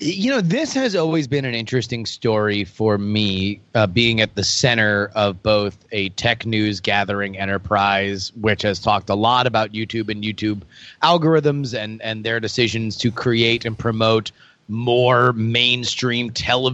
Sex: male